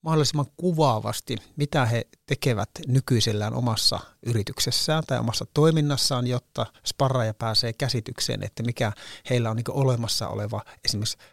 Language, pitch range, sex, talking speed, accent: Finnish, 110-135 Hz, male, 125 wpm, native